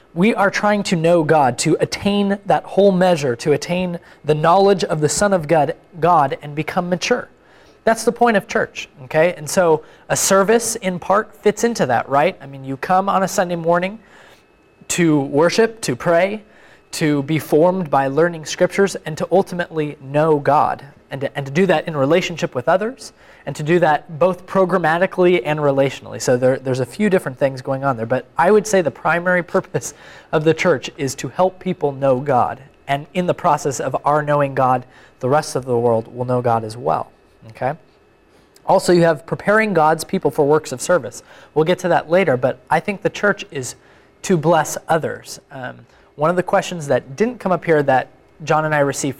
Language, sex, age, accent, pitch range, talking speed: English, male, 20-39, American, 140-185 Hz, 200 wpm